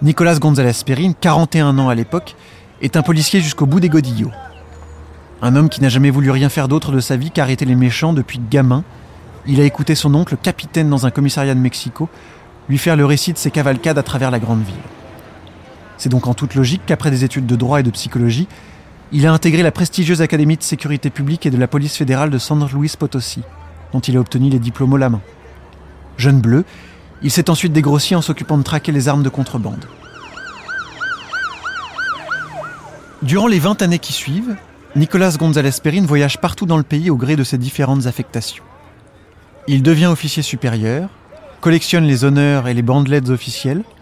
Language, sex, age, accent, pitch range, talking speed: French, male, 30-49, French, 125-155 Hz, 190 wpm